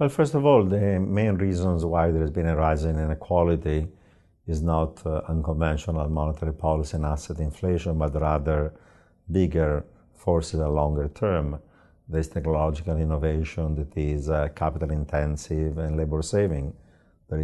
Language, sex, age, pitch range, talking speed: English, male, 50-69, 75-85 Hz, 150 wpm